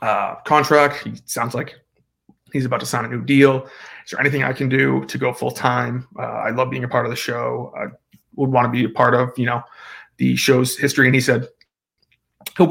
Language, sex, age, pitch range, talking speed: English, male, 30-49, 120-135 Hz, 225 wpm